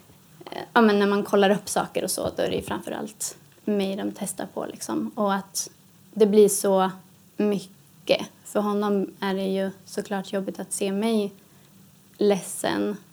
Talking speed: 160 wpm